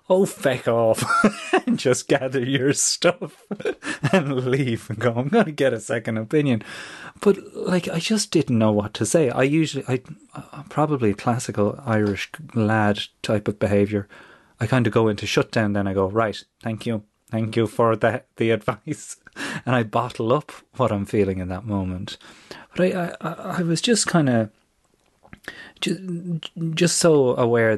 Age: 30-49